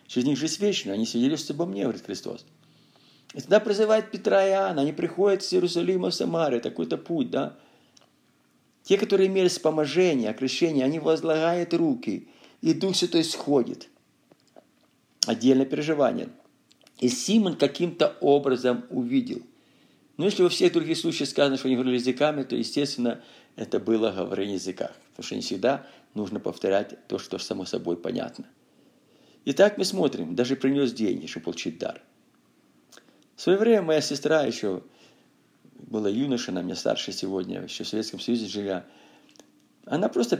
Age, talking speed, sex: 50-69, 150 wpm, male